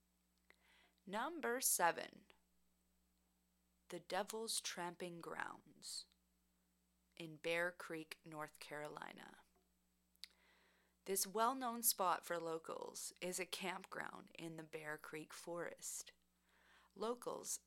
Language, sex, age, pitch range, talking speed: English, female, 30-49, 145-185 Hz, 85 wpm